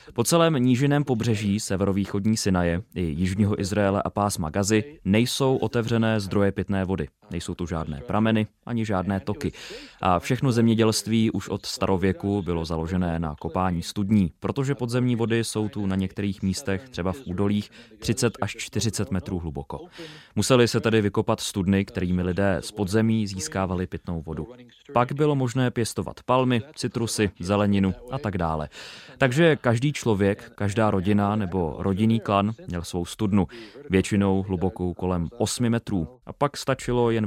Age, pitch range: 20-39, 90-115 Hz